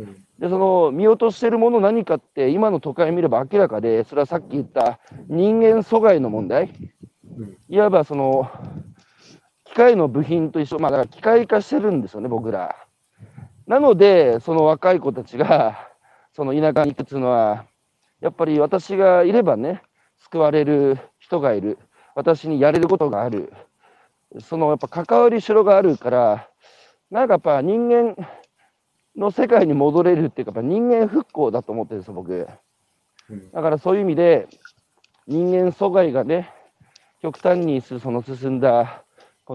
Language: Japanese